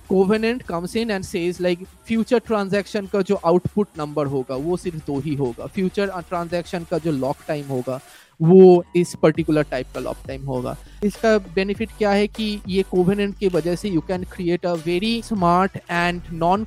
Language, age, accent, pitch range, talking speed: English, 20-39, Indian, 145-180 Hz, 160 wpm